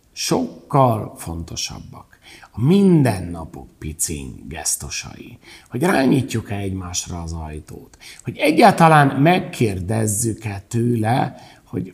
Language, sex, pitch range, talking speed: Hungarian, male, 95-155 Hz, 80 wpm